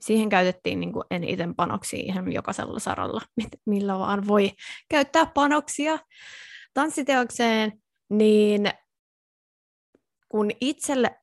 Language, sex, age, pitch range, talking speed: Finnish, female, 20-39, 185-245 Hz, 90 wpm